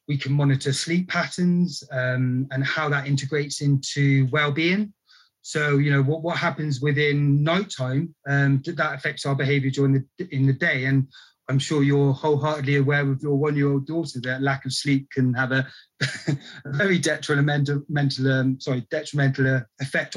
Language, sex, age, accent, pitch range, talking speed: English, male, 30-49, British, 140-170 Hz, 165 wpm